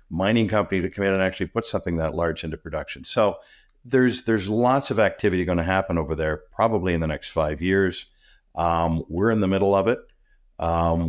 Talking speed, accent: 205 wpm, American